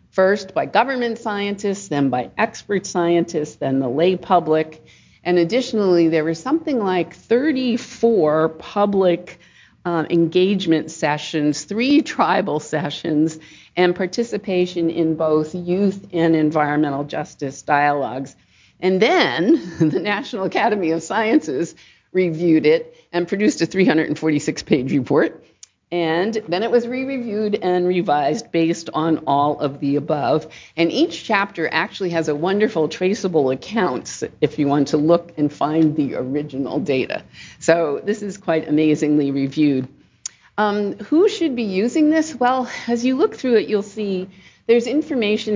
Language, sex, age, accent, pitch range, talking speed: English, female, 50-69, American, 155-210 Hz, 135 wpm